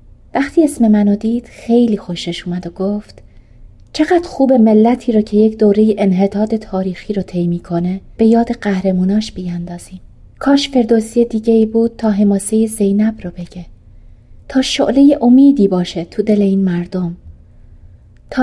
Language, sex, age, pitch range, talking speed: Persian, female, 30-49, 185-235 Hz, 140 wpm